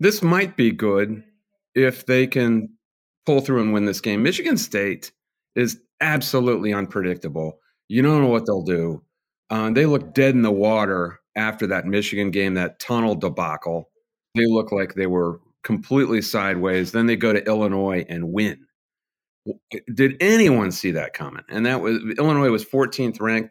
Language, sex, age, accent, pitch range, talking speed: English, male, 40-59, American, 100-145 Hz, 165 wpm